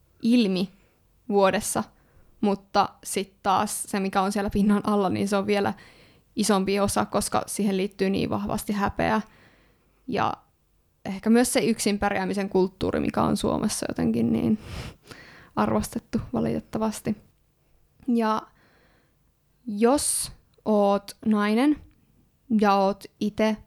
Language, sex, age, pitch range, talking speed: Finnish, female, 20-39, 205-235 Hz, 110 wpm